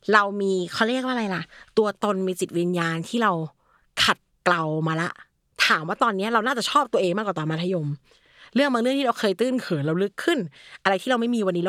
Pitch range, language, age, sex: 175-235 Hz, Thai, 30-49, female